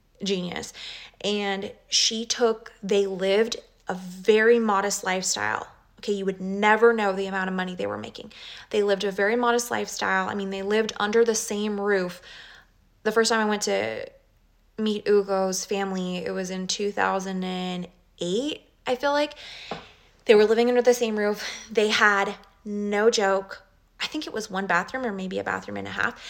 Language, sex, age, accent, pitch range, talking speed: English, female, 20-39, American, 190-230 Hz, 175 wpm